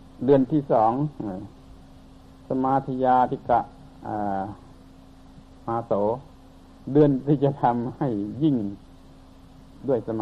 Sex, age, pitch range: male, 60-79, 105-140 Hz